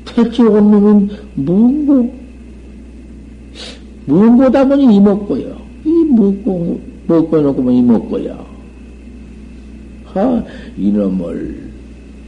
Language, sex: Korean, male